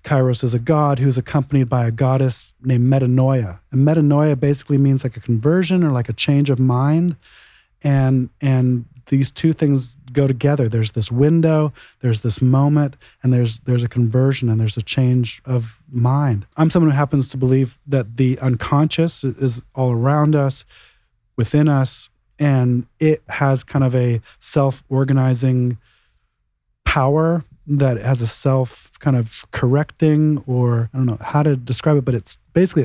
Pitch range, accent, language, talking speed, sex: 125-145 Hz, American, English, 165 wpm, male